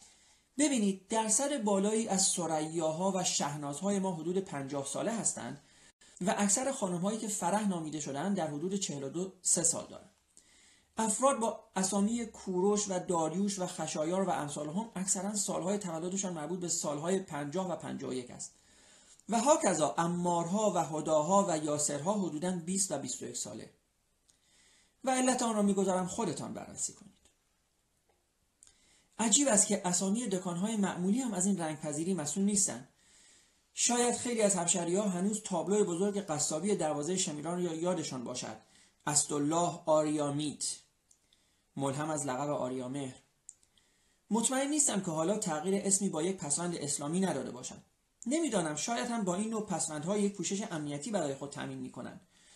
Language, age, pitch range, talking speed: Persian, 30-49, 155-205 Hz, 145 wpm